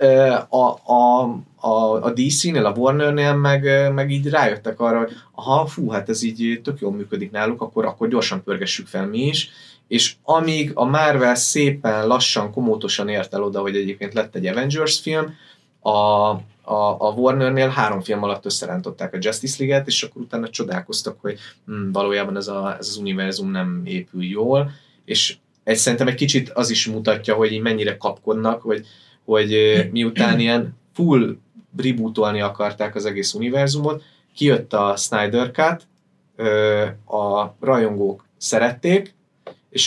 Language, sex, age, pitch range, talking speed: Hungarian, male, 20-39, 105-140 Hz, 145 wpm